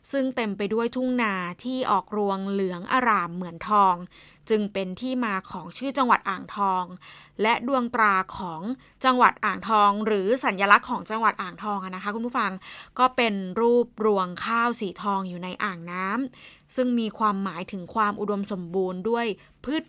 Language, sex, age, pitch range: Thai, female, 20-39, 190-230 Hz